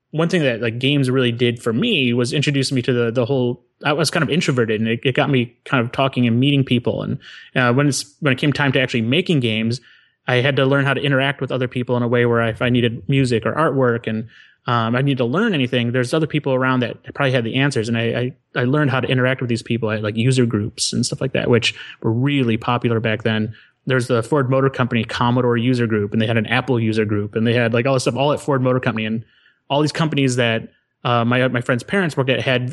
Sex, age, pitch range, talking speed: male, 30-49, 120-140 Hz, 270 wpm